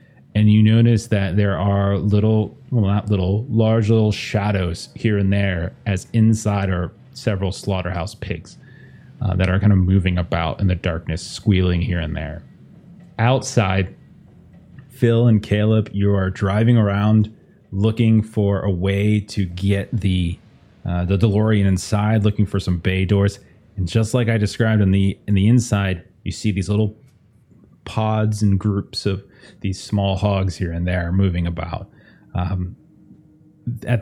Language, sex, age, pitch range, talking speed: English, male, 30-49, 95-115 Hz, 155 wpm